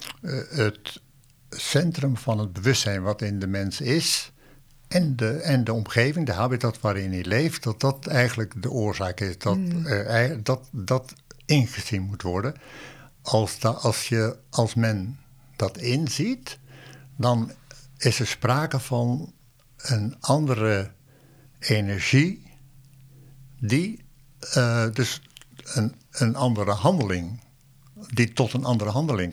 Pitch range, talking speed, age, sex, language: 110-135 Hz, 120 wpm, 60-79, male, Dutch